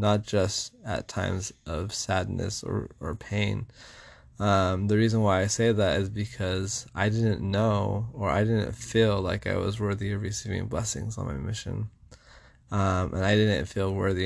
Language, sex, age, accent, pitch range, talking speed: English, male, 20-39, American, 95-110 Hz, 175 wpm